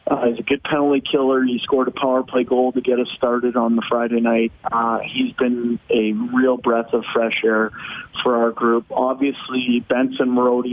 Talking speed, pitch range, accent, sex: 195 wpm, 120-130 Hz, American, male